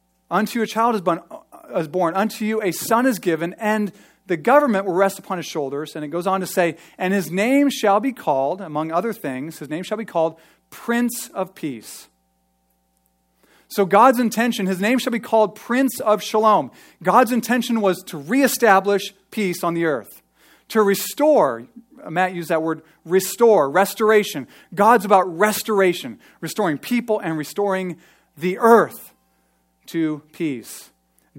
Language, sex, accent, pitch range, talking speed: English, male, American, 150-215 Hz, 155 wpm